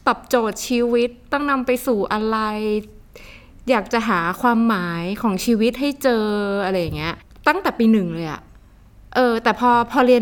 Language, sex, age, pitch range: Thai, female, 20-39, 195-255 Hz